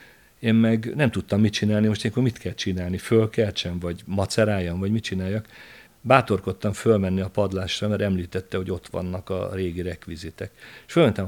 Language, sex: Hungarian, male